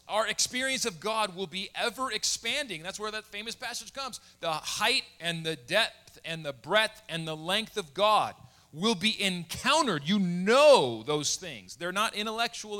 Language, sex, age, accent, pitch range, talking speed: English, male, 30-49, American, 145-210 Hz, 170 wpm